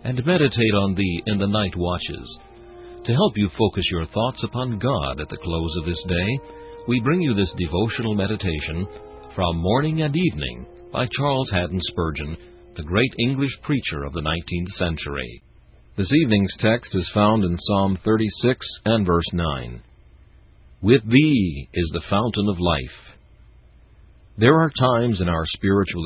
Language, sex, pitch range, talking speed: English, male, 85-115 Hz, 155 wpm